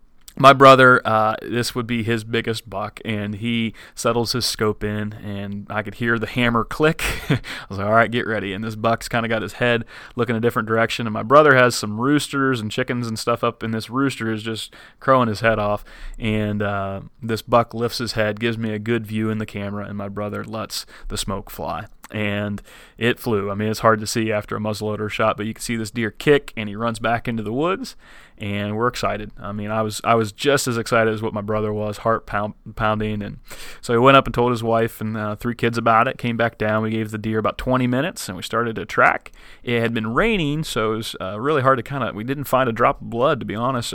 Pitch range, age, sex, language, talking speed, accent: 105-120 Hz, 30-49, male, English, 250 wpm, American